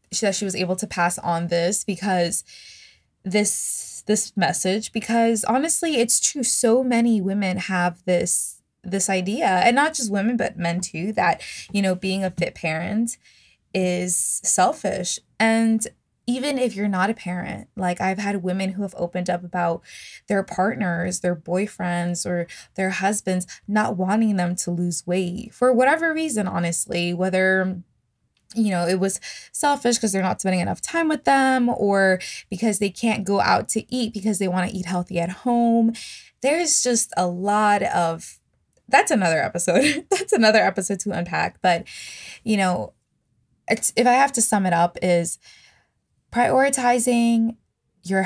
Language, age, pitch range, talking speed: English, 20-39, 180-225 Hz, 160 wpm